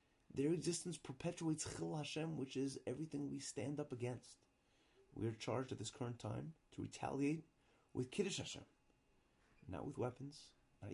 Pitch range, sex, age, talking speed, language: 105-150 Hz, male, 30-49, 155 wpm, English